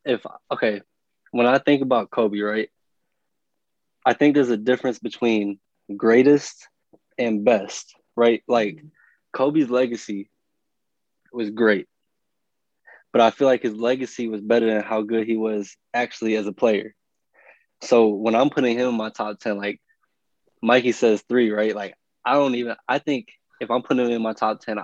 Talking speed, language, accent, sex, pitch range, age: 165 wpm, English, American, male, 105-120 Hz, 20-39